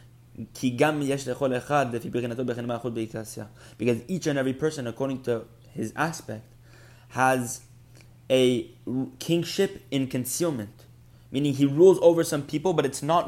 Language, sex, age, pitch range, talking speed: English, male, 20-39, 120-140 Hz, 105 wpm